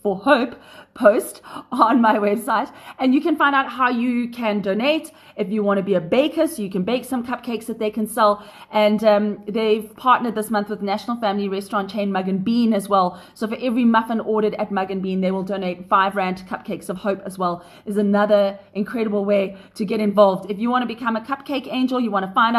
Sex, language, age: female, English, 30-49